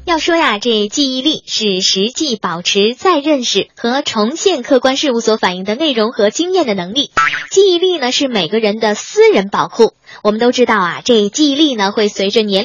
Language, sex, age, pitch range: Chinese, male, 10-29, 205-320 Hz